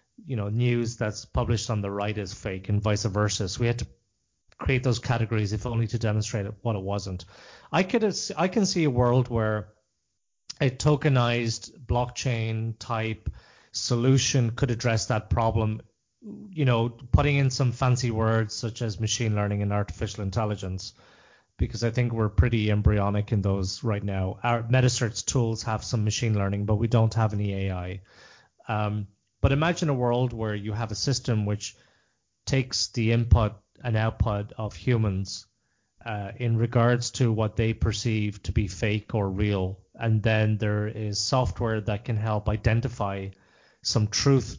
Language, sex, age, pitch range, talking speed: English, male, 30-49, 105-120 Hz, 165 wpm